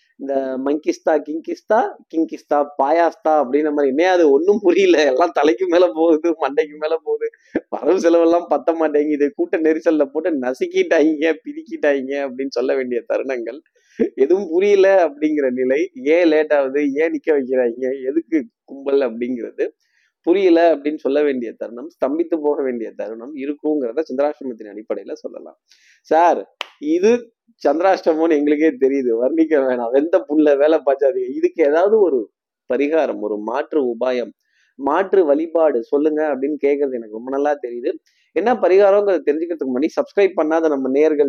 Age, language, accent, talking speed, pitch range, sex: 20-39, Tamil, native, 100 wpm, 140-200 Hz, male